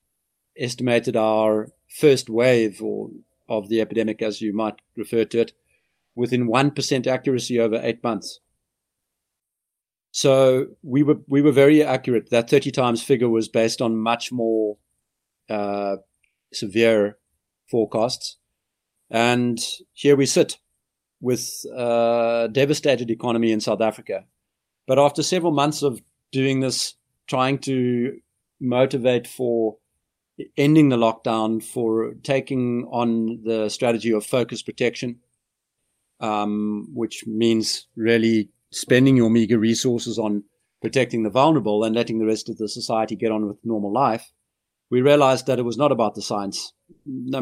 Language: English